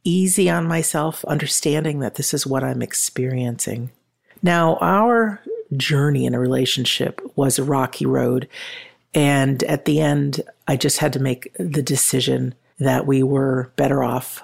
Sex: female